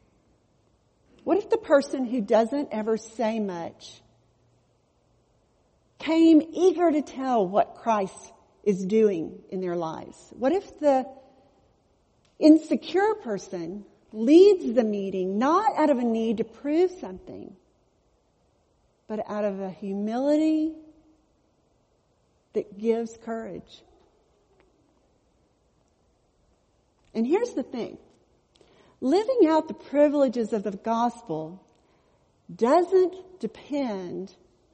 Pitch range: 210-315 Hz